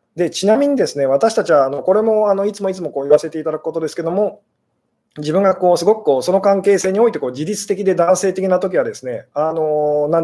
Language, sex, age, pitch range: Japanese, male, 20-39, 150-200 Hz